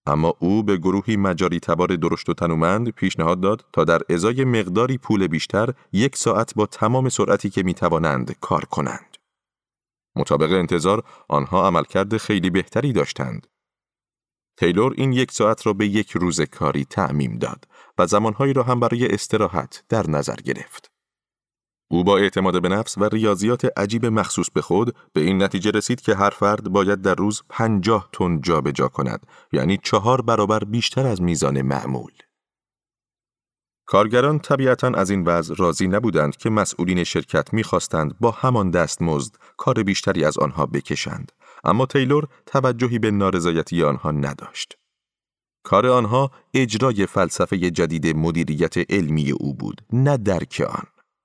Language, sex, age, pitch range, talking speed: Persian, male, 30-49, 85-115 Hz, 145 wpm